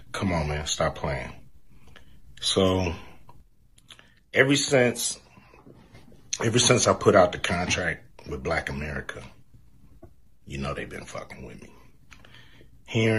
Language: English